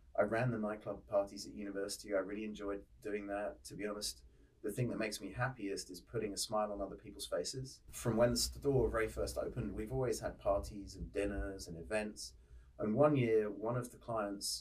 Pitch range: 95-110 Hz